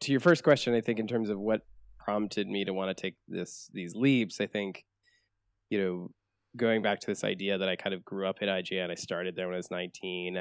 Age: 20-39